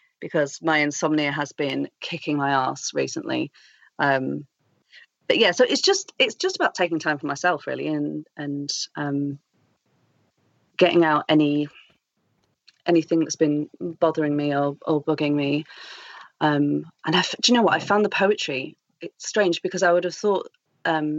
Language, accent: English, British